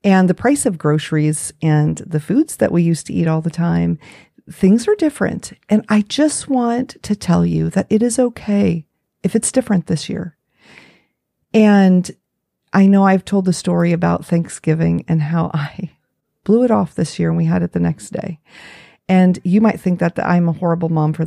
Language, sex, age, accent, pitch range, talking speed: English, female, 40-59, American, 160-195 Hz, 200 wpm